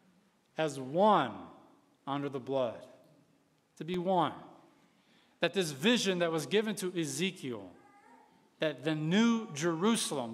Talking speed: 115 wpm